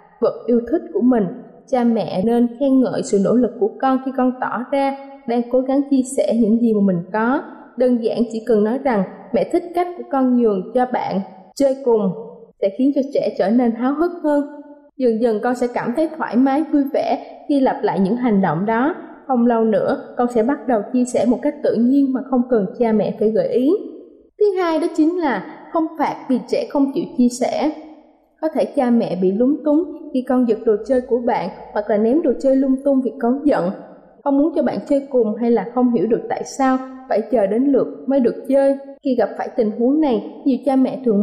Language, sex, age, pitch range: Thai, female, 20-39, 225-280 Hz